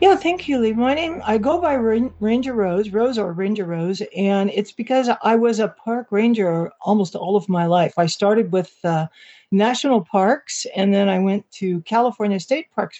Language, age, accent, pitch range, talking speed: English, 60-79, American, 175-220 Hz, 200 wpm